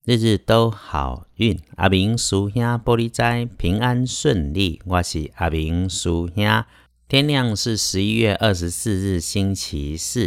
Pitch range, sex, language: 75-100 Hz, male, Chinese